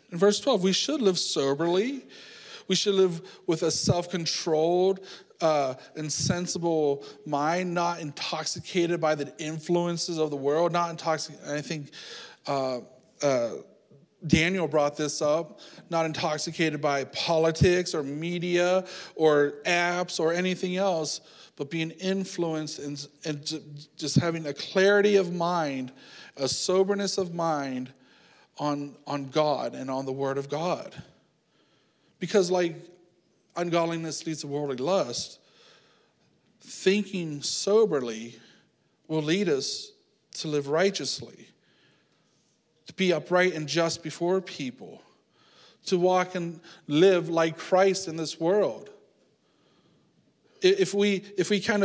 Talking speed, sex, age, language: 120 wpm, male, 40-59, English